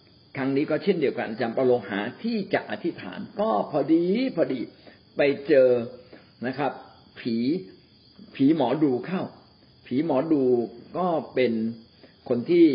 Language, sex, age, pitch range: Thai, male, 60-79, 120-160 Hz